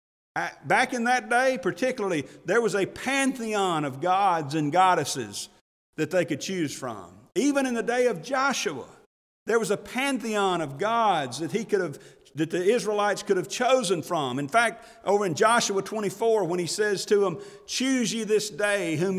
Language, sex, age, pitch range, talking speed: English, male, 40-59, 170-215 Hz, 180 wpm